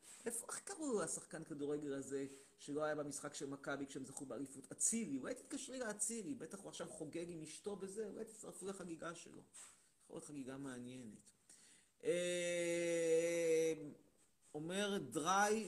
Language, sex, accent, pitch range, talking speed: Hebrew, male, native, 135-180 Hz, 140 wpm